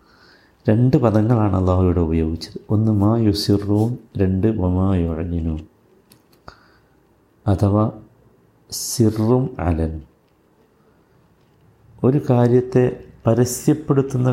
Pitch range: 90-115 Hz